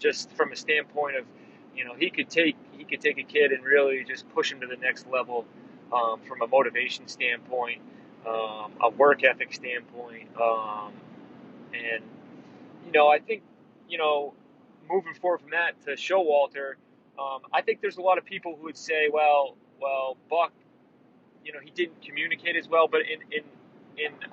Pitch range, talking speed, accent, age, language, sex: 130-185 Hz, 185 wpm, American, 30-49, English, male